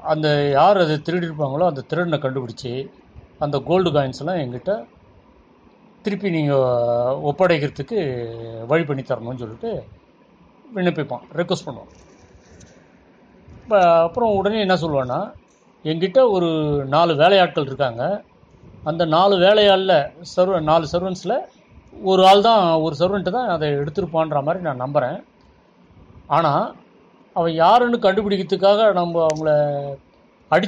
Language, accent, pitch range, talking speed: Tamil, native, 140-185 Hz, 105 wpm